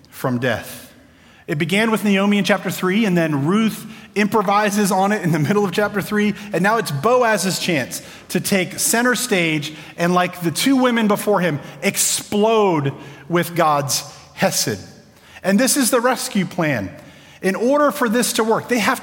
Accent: American